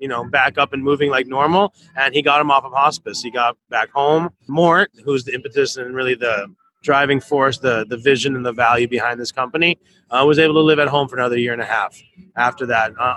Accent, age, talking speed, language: American, 30-49, 240 wpm, English